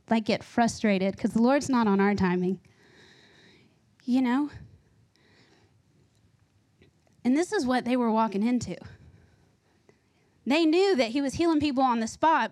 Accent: American